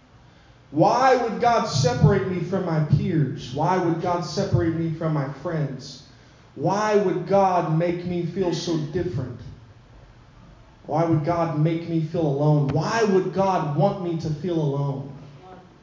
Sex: male